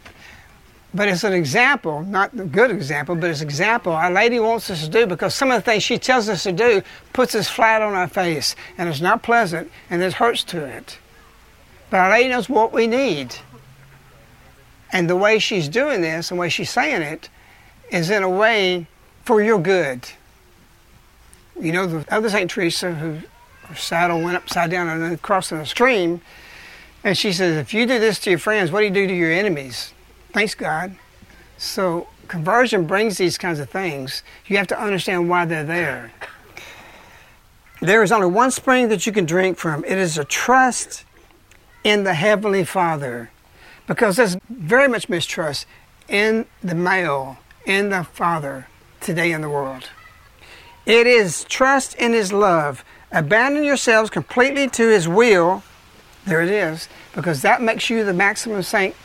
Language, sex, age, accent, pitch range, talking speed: English, male, 60-79, American, 165-220 Hz, 175 wpm